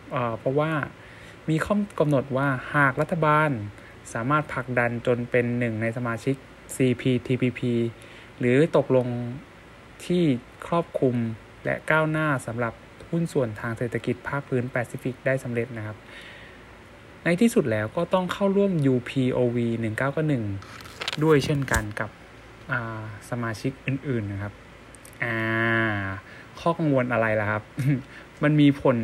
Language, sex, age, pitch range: Thai, male, 20-39, 115-140 Hz